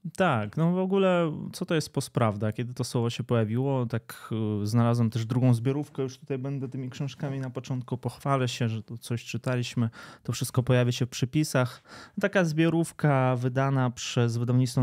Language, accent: Polish, native